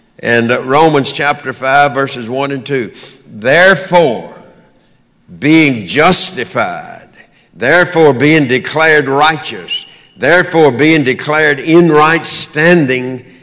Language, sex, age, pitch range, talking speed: English, male, 60-79, 135-175 Hz, 95 wpm